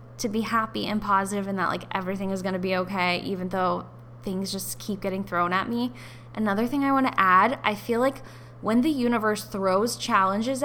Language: English